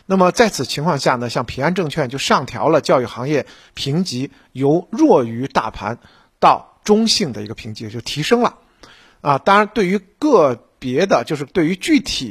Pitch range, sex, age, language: 130-190 Hz, male, 50-69, Chinese